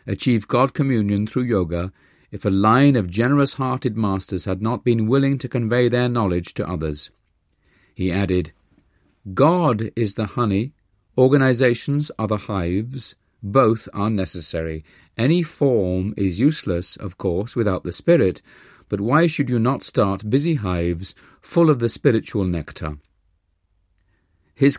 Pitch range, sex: 90-120 Hz, male